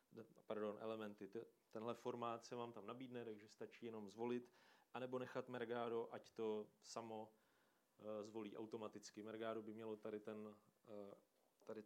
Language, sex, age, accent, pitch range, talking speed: Czech, male, 30-49, native, 110-135 Hz, 130 wpm